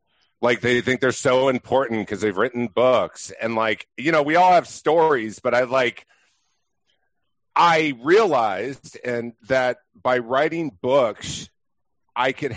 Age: 50-69